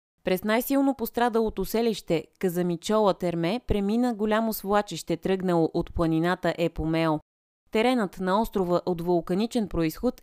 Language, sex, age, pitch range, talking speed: Bulgarian, female, 20-39, 165-220 Hz, 110 wpm